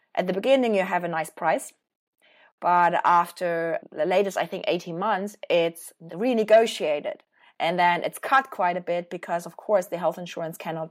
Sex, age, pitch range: female, 20-39, 175-220 Hz